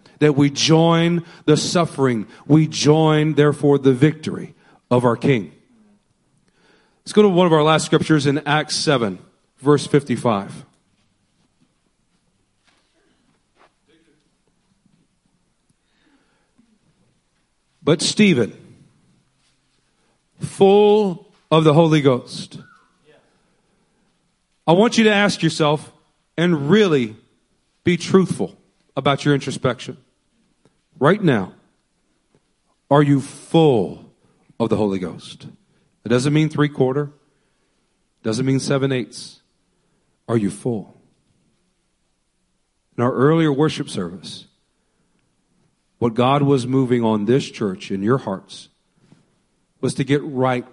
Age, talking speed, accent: 40-59, 100 wpm, American